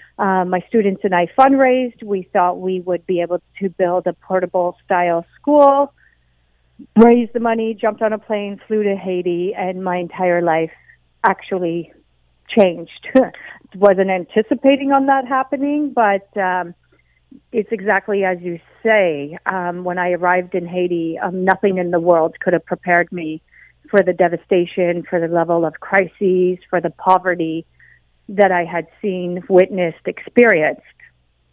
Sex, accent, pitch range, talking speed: female, American, 175-205 Hz, 145 wpm